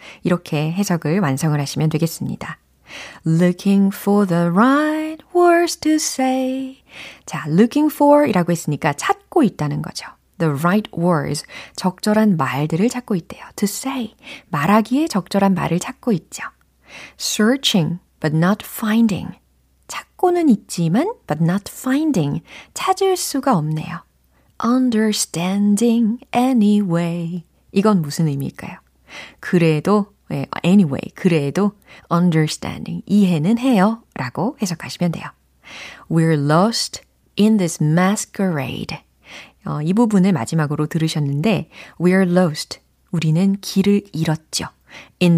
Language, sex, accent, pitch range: Korean, female, native, 165-230 Hz